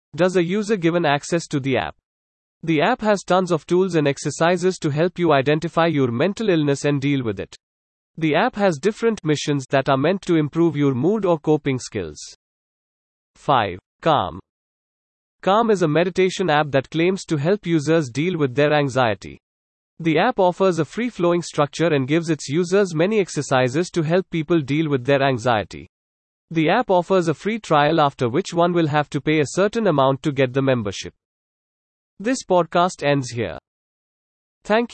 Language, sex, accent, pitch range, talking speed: English, male, Indian, 140-180 Hz, 175 wpm